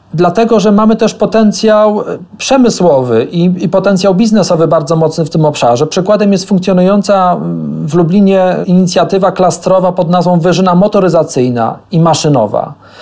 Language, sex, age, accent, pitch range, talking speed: Polish, male, 40-59, native, 165-200 Hz, 130 wpm